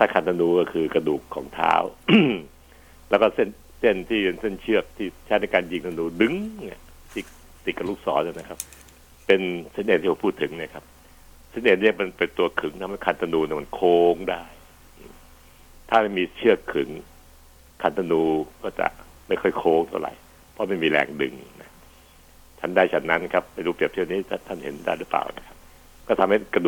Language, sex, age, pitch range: Thai, male, 60-79, 65-90 Hz